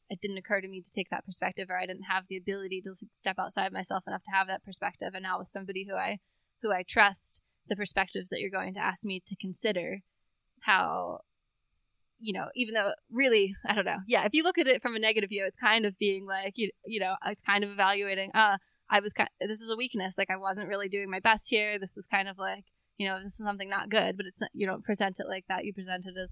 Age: 10-29